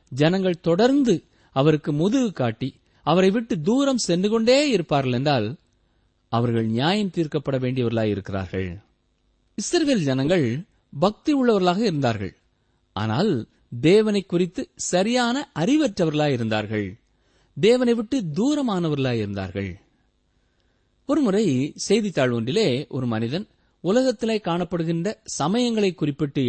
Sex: male